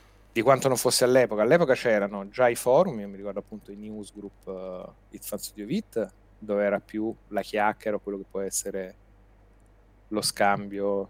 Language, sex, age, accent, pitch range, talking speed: Italian, male, 30-49, native, 100-120 Hz, 155 wpm